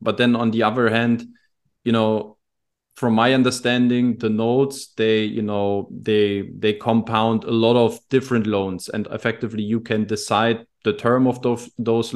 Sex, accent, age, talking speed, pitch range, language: male, German, 20-39, 170 wpm, 105-120 Hz, German